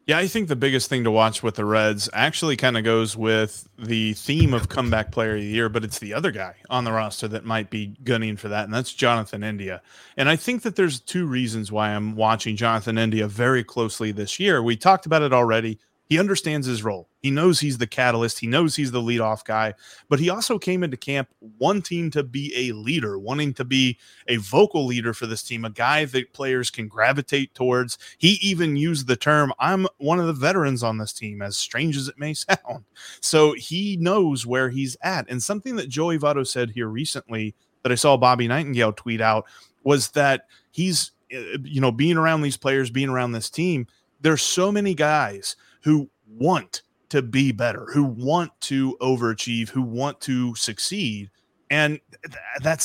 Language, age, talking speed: English, 30-49, 200 wpm